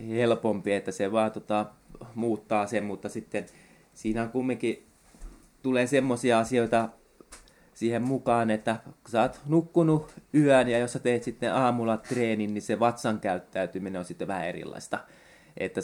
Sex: male